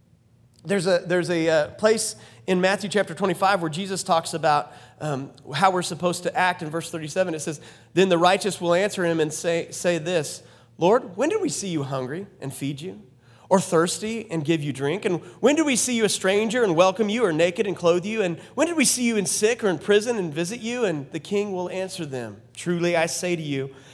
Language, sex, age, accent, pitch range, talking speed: English, male, 30-49, American, 155-190 Hz, 230 wpm